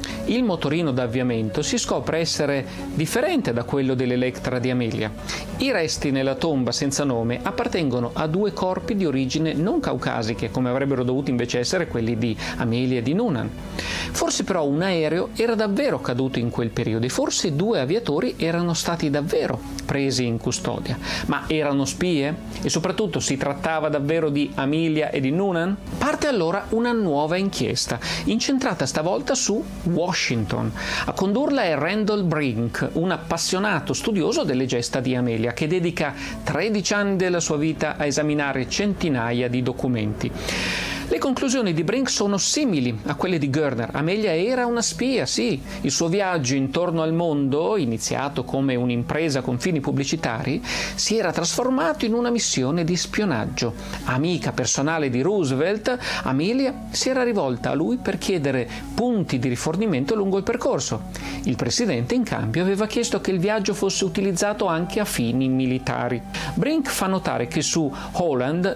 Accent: native